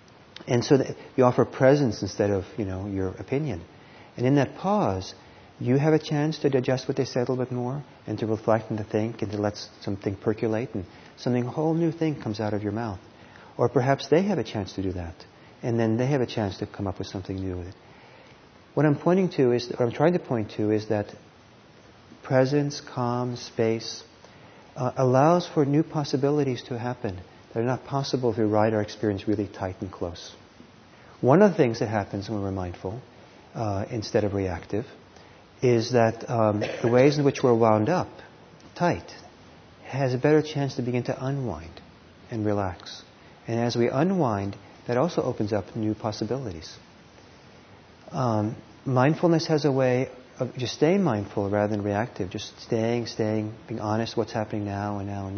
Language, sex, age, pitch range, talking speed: English, male, 40-59, 105-130 Hz, 190 wpm